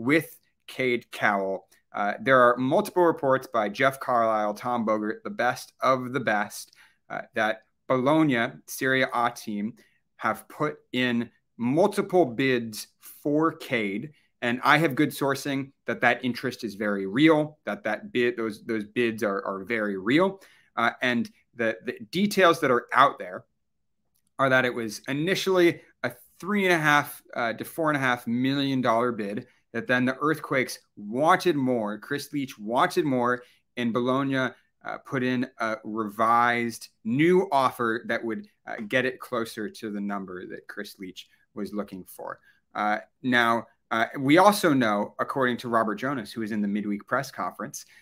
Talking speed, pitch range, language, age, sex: 165 wpm, 110-145 Hz, English, 30-49, male